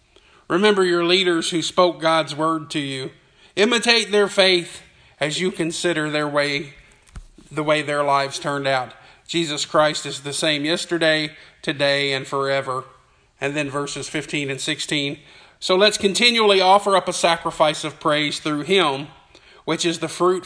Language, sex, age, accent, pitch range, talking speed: English, male, 40-59, American, 150-190 Hz, 155 wpm